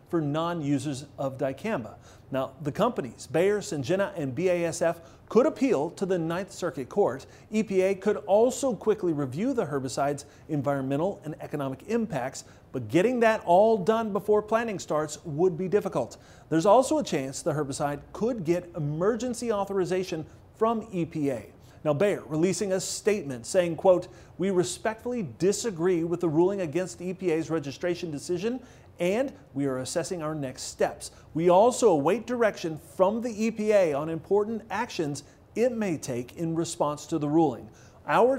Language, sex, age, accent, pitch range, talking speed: English, male, 40-59, American, 140-200 Hz, 150 wpm